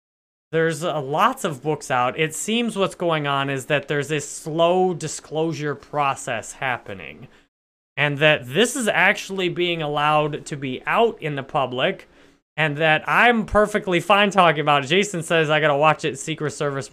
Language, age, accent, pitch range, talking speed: English, 20-39, American, 145-190 Hz, 175 wpm